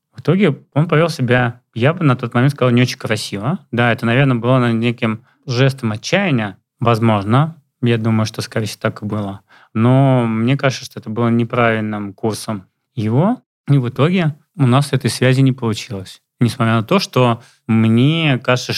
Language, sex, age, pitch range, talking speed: Russian, male, 20-39, 115-135 Hz, 175 wpm